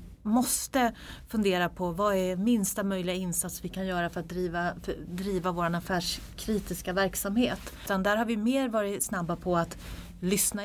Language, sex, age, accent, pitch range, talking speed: Swedish, female, 30-49, native, 175-210 Hz, 150 wpm